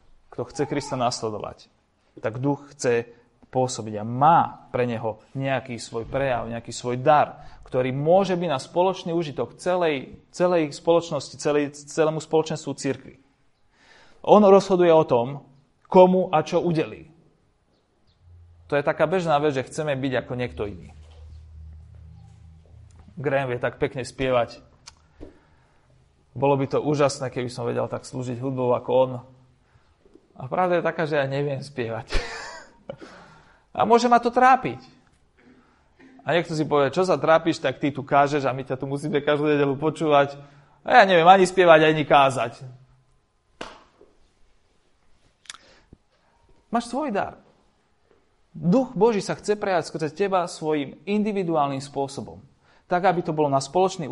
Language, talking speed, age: Slovak, 140 wpm, 30-49